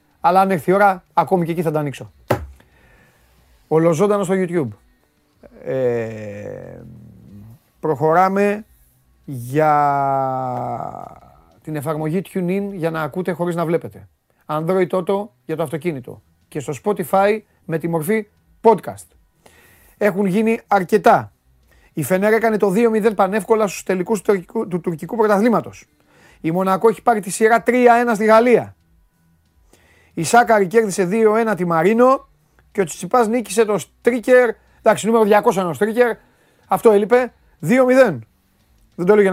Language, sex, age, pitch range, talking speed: Greek, male, 30-49, 145-205 Hz, 130 wpm